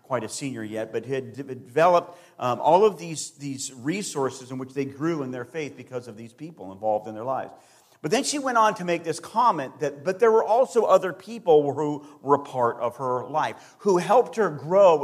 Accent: American